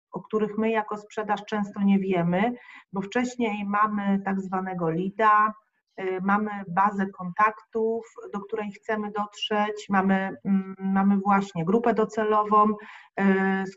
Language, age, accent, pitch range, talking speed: Polish, 30-49, native, 195-220 Hz, 120 wpm